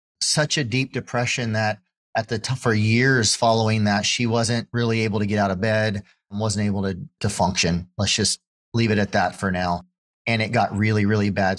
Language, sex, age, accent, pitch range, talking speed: English, male, 30-49, American, 105-125 Hz, 210 wpm